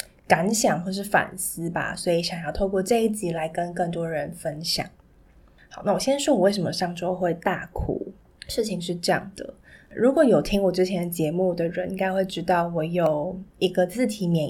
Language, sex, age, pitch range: Chinese, female, 20-39, 175-205 Hz